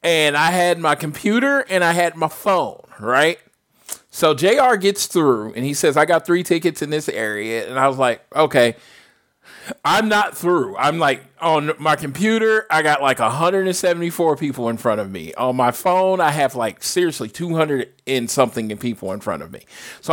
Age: 40-59